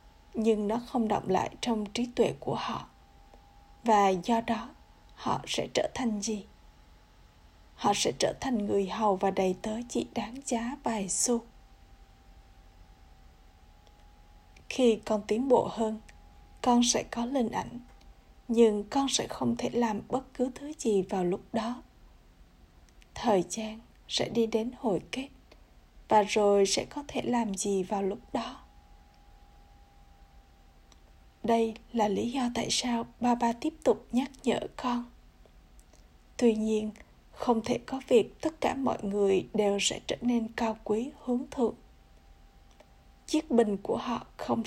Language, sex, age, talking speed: Vietnamese, female, 20-39, 145 wpm